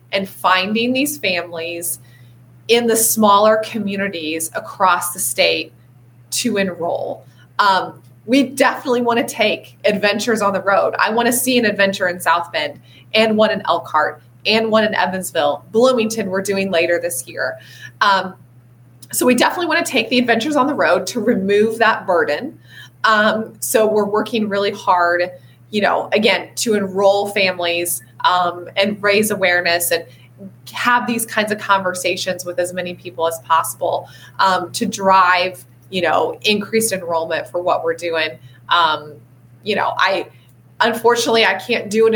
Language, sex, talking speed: English, female, 150 wpm